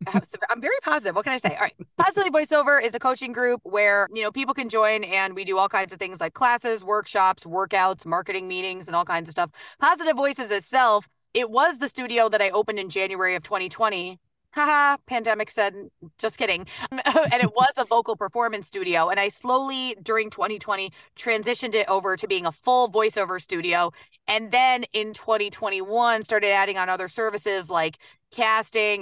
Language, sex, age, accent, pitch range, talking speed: English, female, 20-39, American, 185-230 Hz, 185 wpm